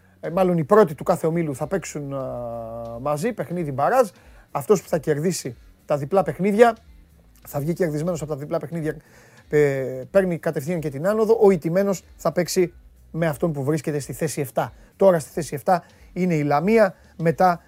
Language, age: Greek, 30-49